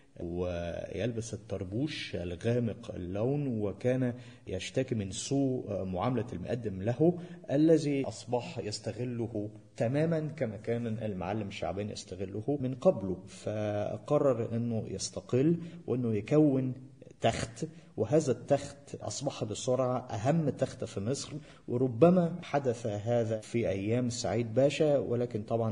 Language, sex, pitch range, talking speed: Malay, male, 105-125 Hz, 105 wpm